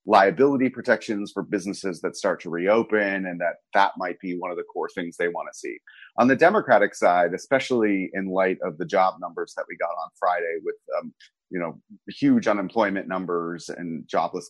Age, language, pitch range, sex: 30-49, English, 95-120 Hz, male